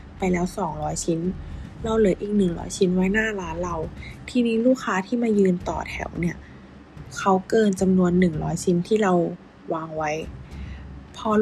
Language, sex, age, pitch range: Thai, female, 20-39, 170-215 Hz